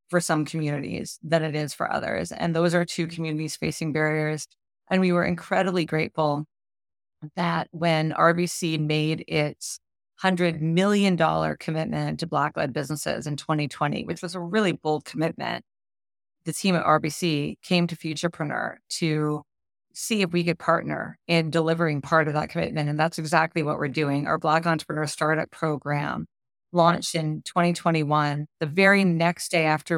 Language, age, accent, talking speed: English, 30-49, American, 155 wpm